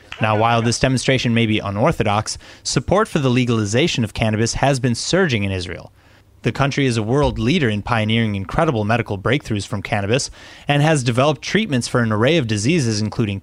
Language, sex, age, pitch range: English, male, 30-49, 110-140 Hz